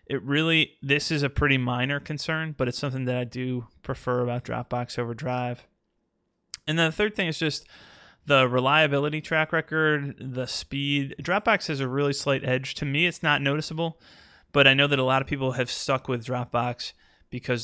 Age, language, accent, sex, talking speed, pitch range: 30-49, English, American, male, 190 wpm, 120-140 Hz